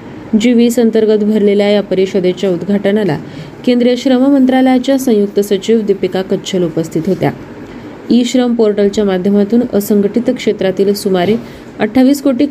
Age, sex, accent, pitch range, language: 20-39, female, native, 190-240 Hz, Marathi